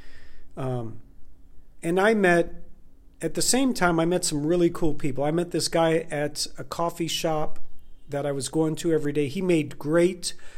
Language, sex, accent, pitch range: English, male, American, 140-175 Hz